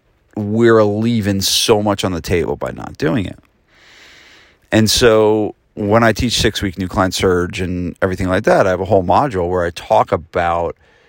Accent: American